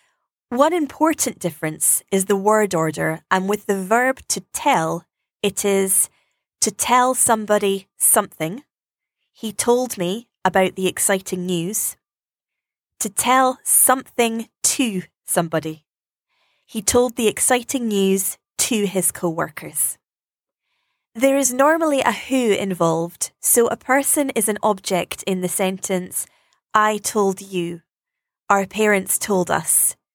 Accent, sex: British, female